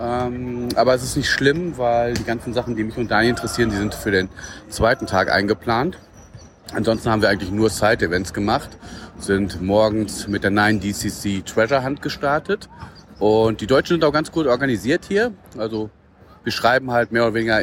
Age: 40-59